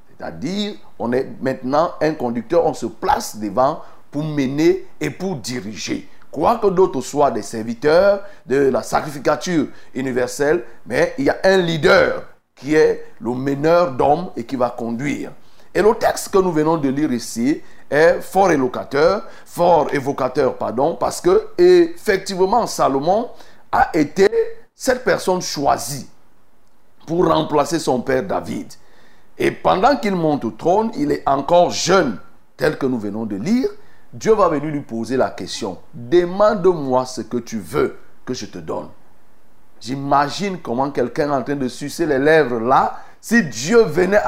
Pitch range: 135-205 Hz